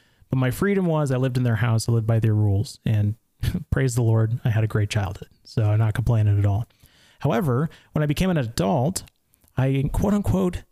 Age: 30-49